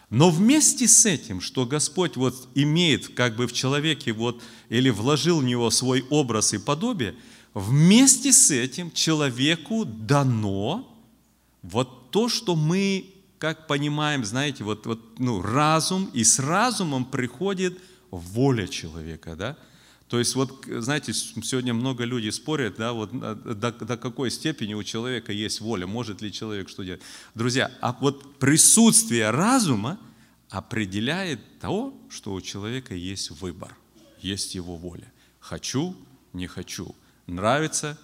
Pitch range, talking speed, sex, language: 105-150 Hz, 135 wpm, male, Russian